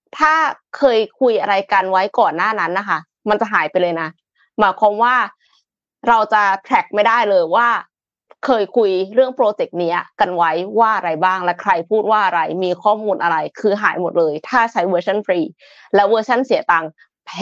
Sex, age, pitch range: female, 20-39, 180-245 Hz